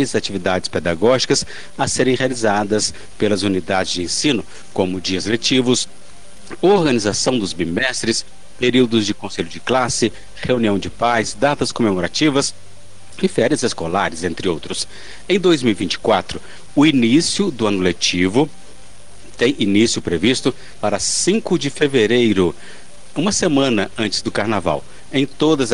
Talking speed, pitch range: 120 wpm, 100-135 Hz